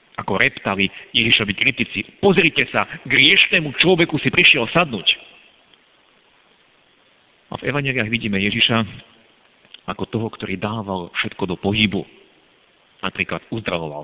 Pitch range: 95-130 Hz